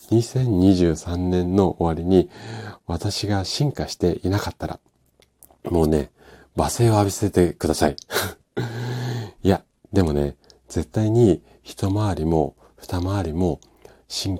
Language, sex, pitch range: Japanese, male, 75-100 Hz